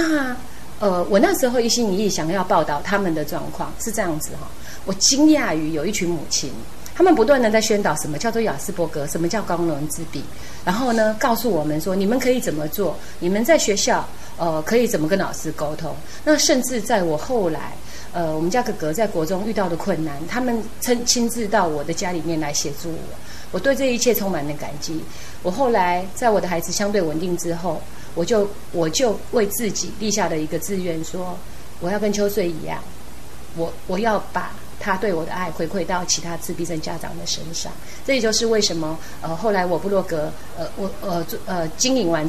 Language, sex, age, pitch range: Chinese, female, 30-49, 160-215 Hz